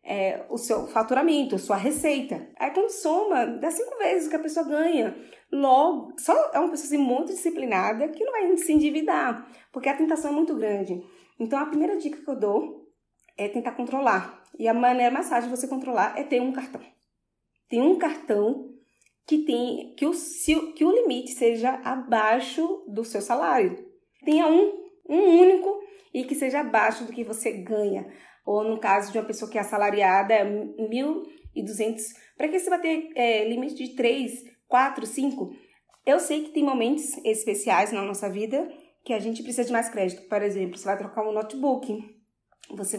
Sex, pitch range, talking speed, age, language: female, 220-315 Hz, 185 wpm, 20-39, Portuguese